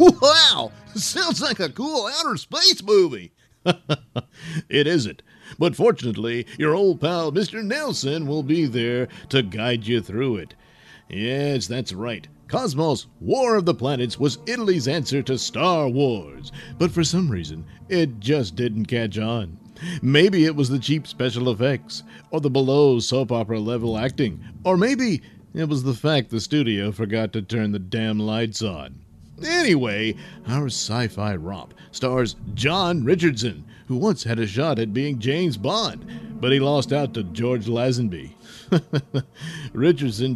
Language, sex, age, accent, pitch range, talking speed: English, male, 50-69, American, 115-165 Hz, 150 wpm